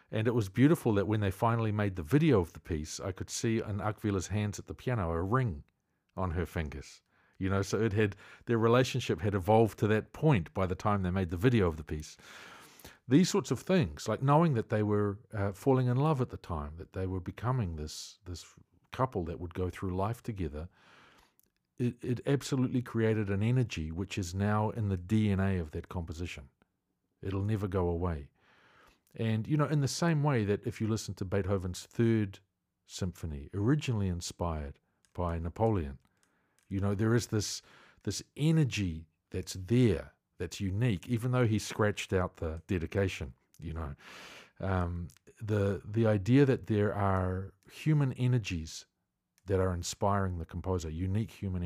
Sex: male